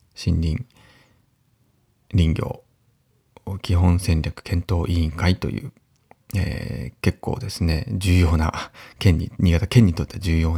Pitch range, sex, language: 90-120 Hz, male, Japanese